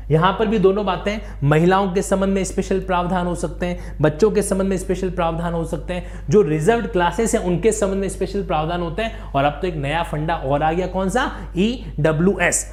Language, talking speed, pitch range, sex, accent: English, 215 wpm, 175-235 Hz, male, Indian